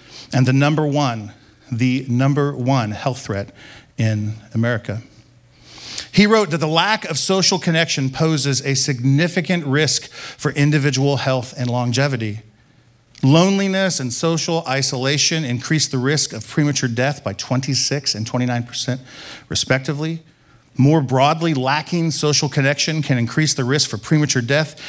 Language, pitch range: English, 125-155 Hz